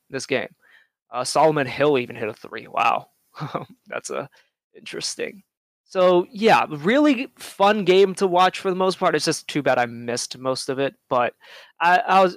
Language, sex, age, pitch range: English, male, 20-39, 135-175 Hz